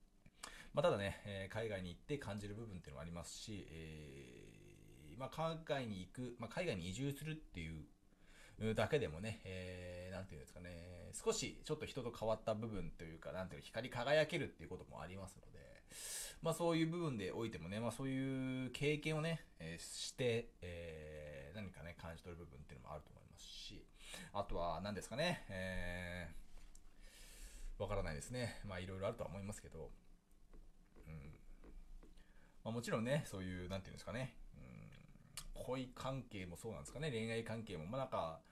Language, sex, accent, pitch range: Japanese, male, native, 90-125 Hz